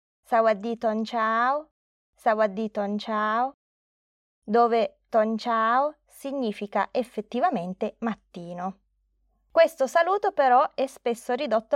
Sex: female